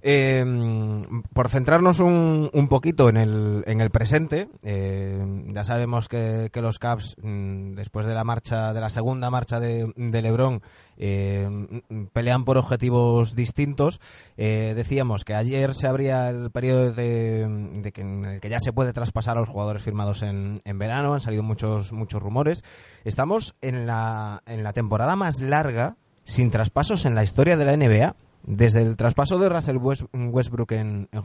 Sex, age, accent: male, 20-39, Spanish